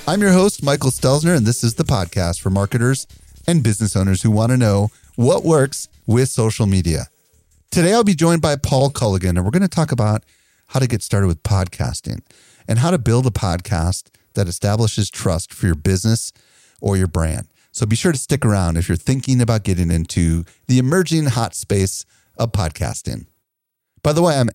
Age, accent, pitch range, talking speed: 30-49, American, 100-130 Hz, 195 wpm